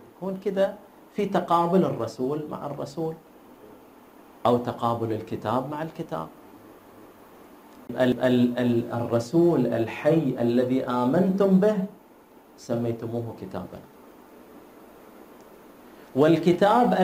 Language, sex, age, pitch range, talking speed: Arabic, male, 40-59, 130-190 Hz, 75 wpm